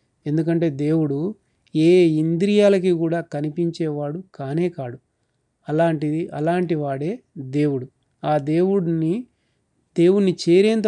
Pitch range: 150-180 Hz